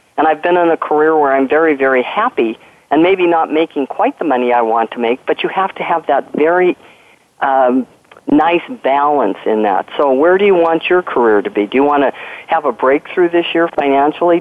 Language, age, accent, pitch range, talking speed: English, 50-69, American, 130-175 Hz, 220 wpm